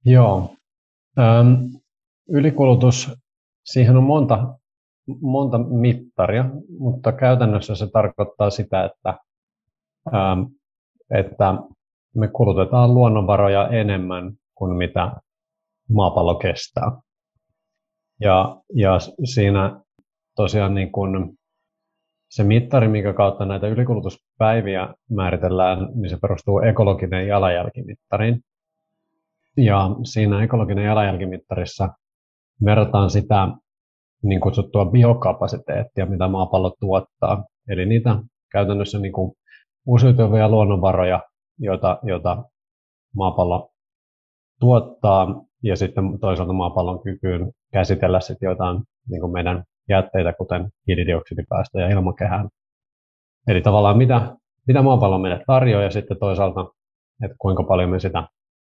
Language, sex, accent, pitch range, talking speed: Finnish, male, native, 95-125 Hz, 95 wpm